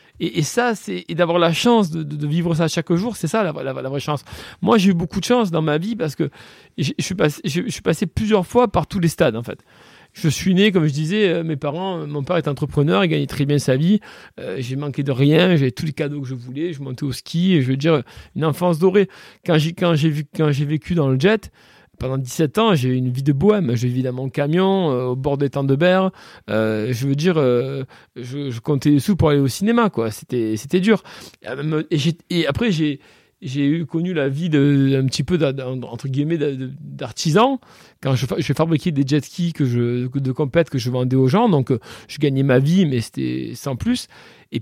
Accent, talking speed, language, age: French, 235 wpm, French, 40-59